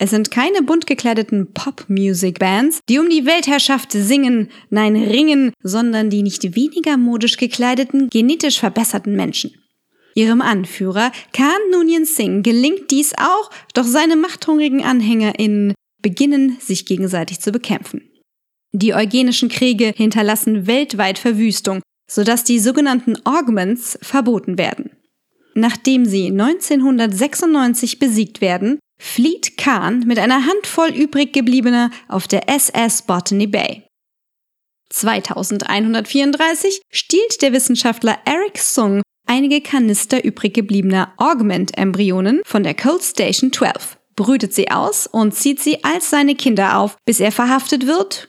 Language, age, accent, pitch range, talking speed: German, 20-39, German, 210-280 Hz, 120 wpm